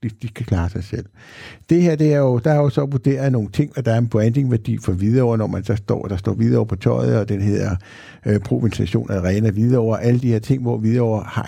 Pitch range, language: 110-135 Hz, Danish